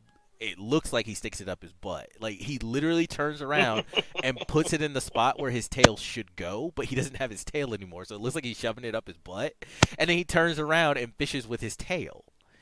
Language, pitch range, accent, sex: English, 120-155 Hz, American, male